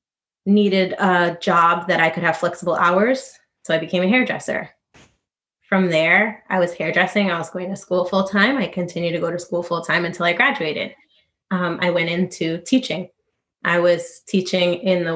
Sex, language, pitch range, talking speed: female, English, 170-200 Hz, 180 wpm